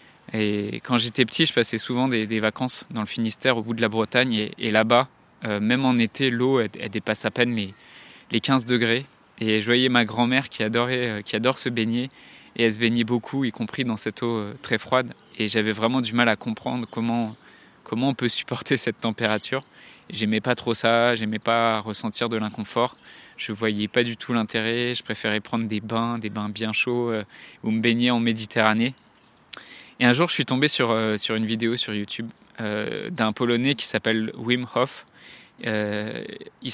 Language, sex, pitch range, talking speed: French, male, 110-125 Hz, 210 wpm